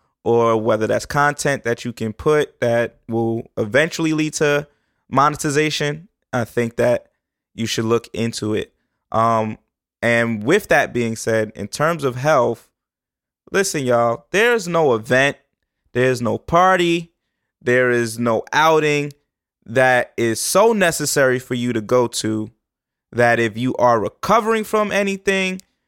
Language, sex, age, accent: English, male, 20-39, American